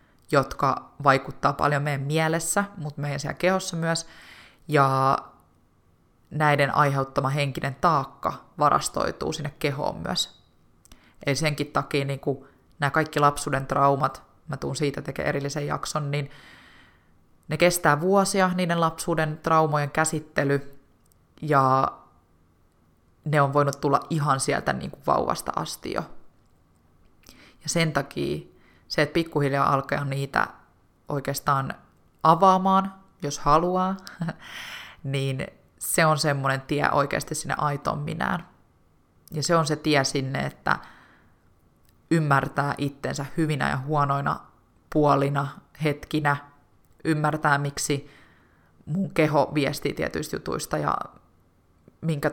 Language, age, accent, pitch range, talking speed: Finnish, 20-39, native, 135-155 Hz, 110 wpm